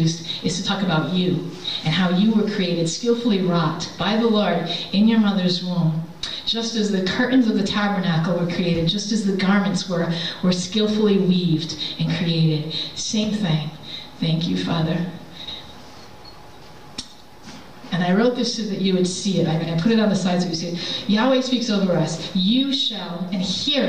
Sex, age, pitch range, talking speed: female, 40-59, 175-220 Hz, 185 wpm